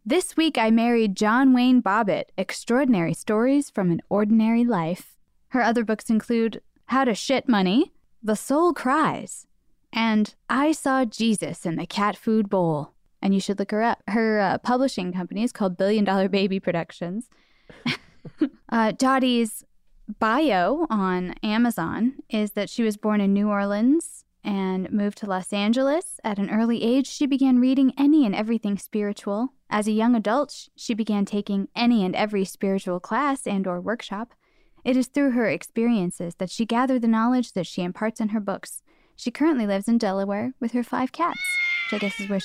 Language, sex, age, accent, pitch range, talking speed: English, female, 10-29, American, 200-250 Hz, 175 wpm